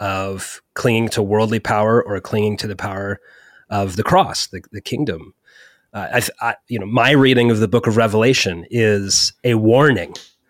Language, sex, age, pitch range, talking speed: English, male, 30-49, 105-125 Hz, 175 wpm